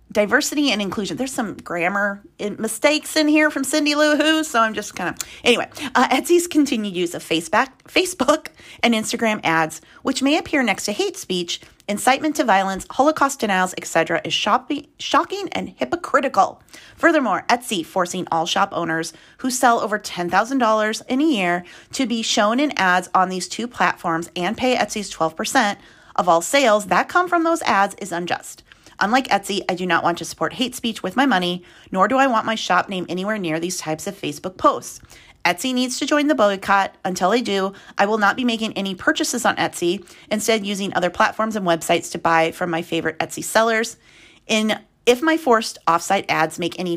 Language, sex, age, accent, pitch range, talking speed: English, female, 30-49, American, 180-260 Hz, 190 wpm